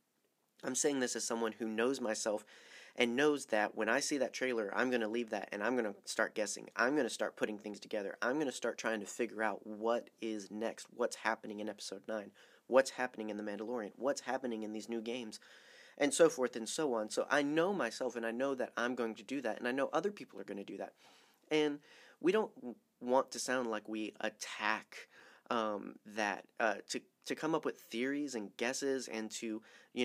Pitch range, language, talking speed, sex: 110-125 Hz, English, 225 wpm, male